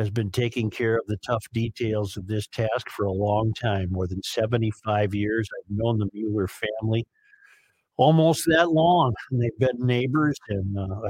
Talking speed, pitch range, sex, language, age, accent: 180 wpm, 105-130 Hz, male, English, 50-69, American